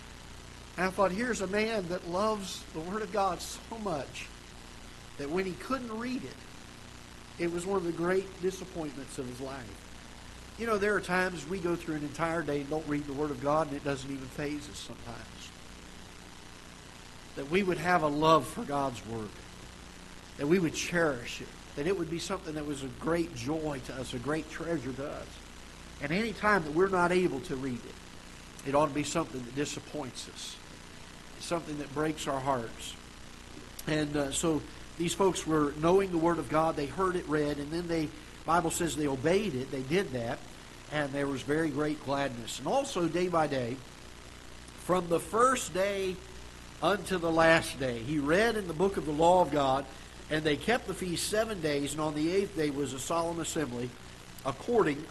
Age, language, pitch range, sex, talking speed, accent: 50-69, English, 130-180 Hz, male, 195 wpm, American